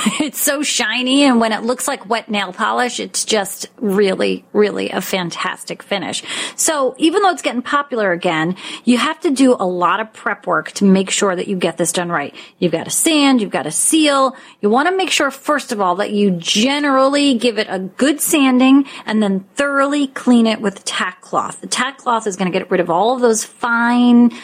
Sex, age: female, 30-49